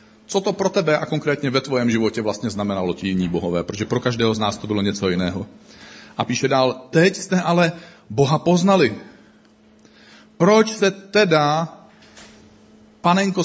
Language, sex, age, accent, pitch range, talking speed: Czech, male, 40-59, native, 130-185 Hz, 155 wpm